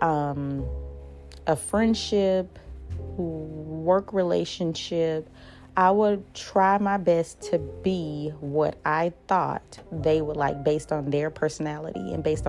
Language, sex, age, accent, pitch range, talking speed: English, female, 30-49, American, 155-185 Hz, 115 wpm